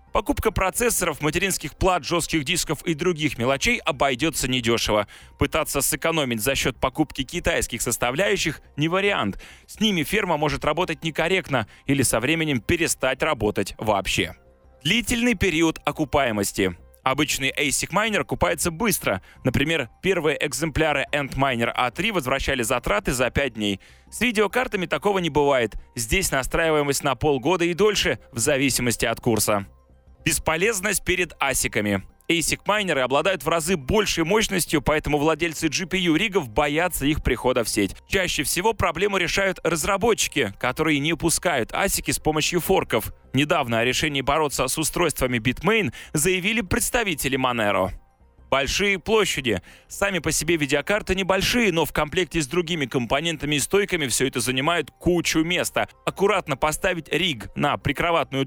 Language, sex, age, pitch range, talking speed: Russian, male, 20-39, 130-180 Hz, 135 wpm